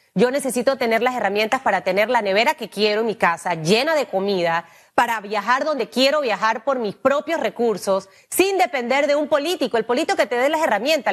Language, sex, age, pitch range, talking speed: Spanish, female, 30-49, 215-285 Hz, 205 wpm